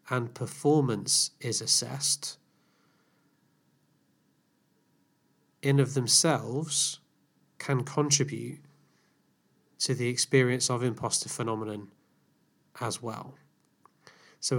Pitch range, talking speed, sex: 120-140 Hz, 75 wpm, male